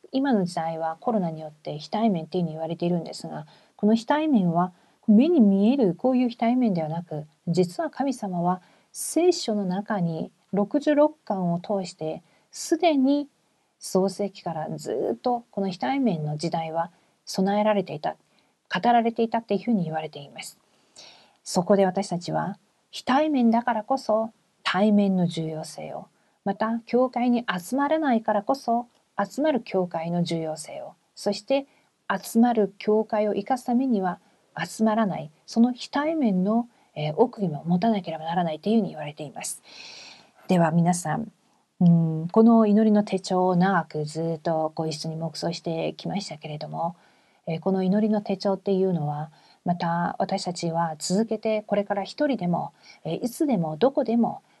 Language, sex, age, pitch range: Korean, female, 40-59, 170-230 Hz